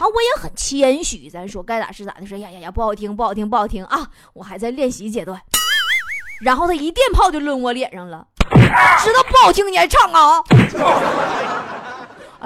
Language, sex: Chinese, female